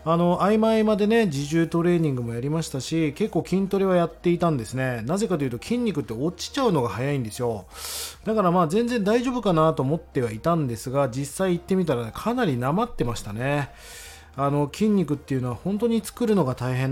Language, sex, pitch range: Japanese, male, 125-185 Hz